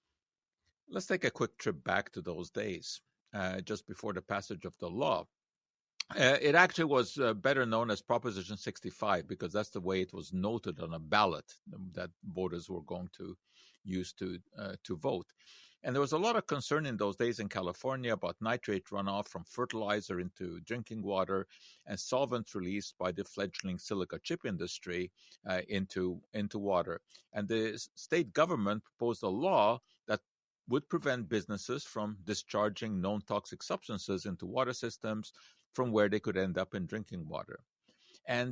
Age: 50-69